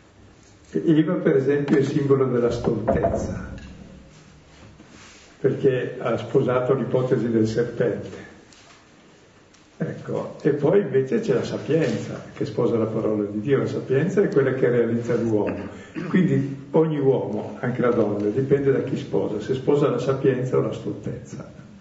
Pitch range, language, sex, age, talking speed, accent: 120-150 Hz, Italian, male, 50-69, 140 wpm, native